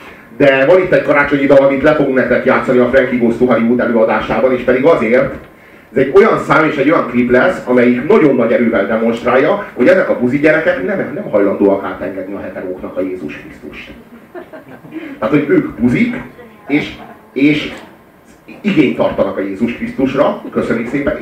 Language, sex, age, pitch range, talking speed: Hungarian, male, 30-49, 135-185 Hz, 165 wpm